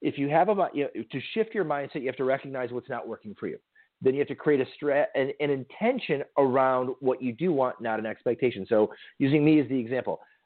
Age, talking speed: 40-59, 245 wpm